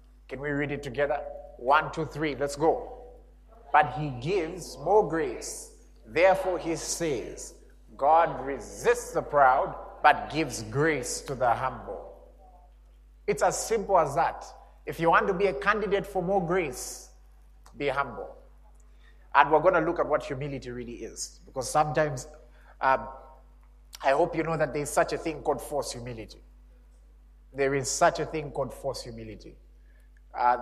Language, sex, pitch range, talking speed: English, male, 120-160 Hz, 155 wpm